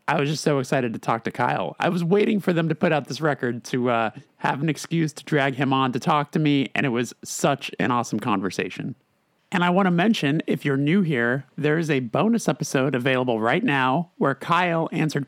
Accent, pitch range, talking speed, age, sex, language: American, 130-165 Hz, 230 wpm, 30-49, male, English